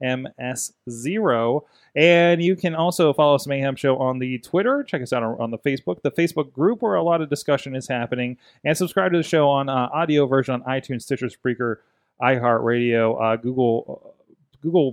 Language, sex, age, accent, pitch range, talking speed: English, male, 30-49, American, 120-145 Hz, 190 wpm